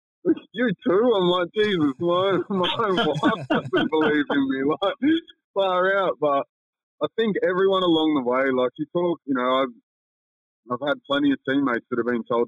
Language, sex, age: English, male, 20-39